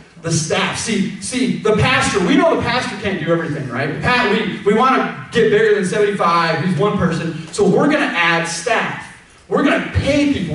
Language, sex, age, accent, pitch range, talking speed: English, male, 30-49, American, 160-210 Hz, 210 wpm